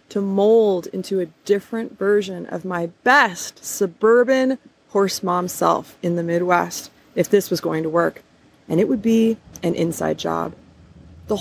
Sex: female